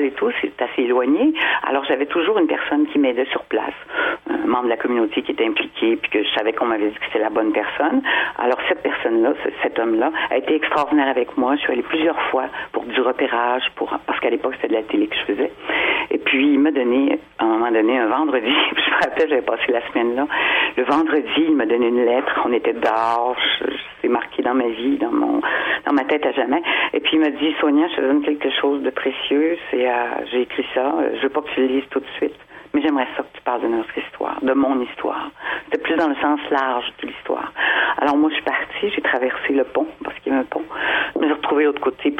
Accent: French